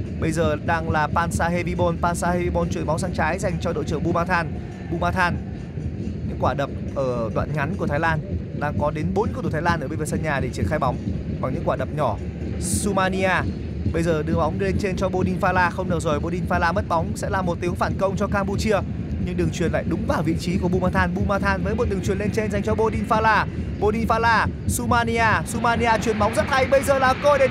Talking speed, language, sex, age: 220 wpm, Vietnamese, male, 20-39